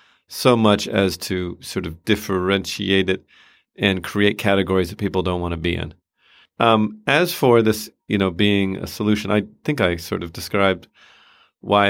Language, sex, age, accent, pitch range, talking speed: English, male, 40-59, American, 95-110 Hz, 170 wpm